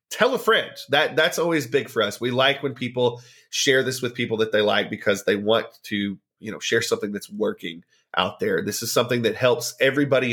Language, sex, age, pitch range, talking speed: English, male, 30-49, 110-145 Hz, 220 wpm